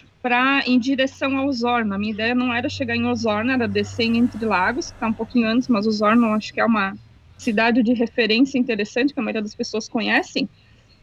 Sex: female